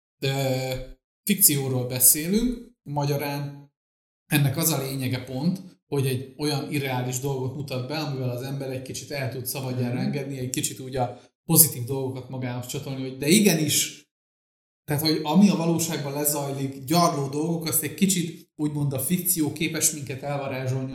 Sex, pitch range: male, 130-155 Hz